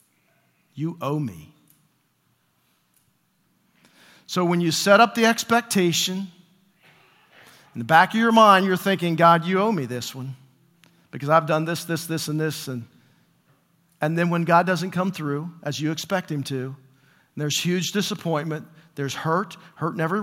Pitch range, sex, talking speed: 140-175 Hz, male, 155 wpm